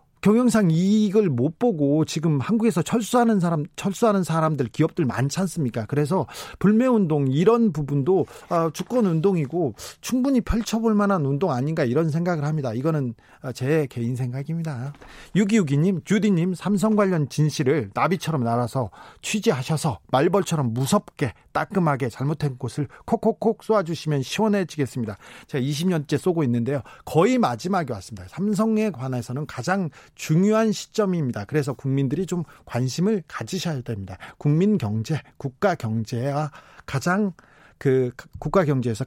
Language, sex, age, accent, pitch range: Korean, male, 40-59, native, 135-200 Hz